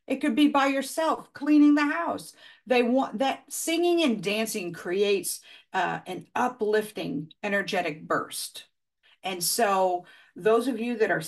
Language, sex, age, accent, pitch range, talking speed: English, female, 50-69, American, 200-275 Hz, 145 wpm